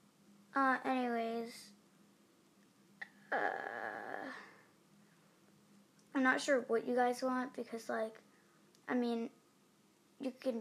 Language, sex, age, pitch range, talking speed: English, female, 20-39, 240-295 Hz, 90 wpm